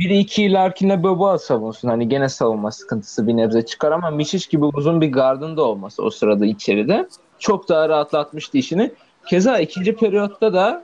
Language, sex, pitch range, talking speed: Turkish, male, 135-185 Hz, 165 wpm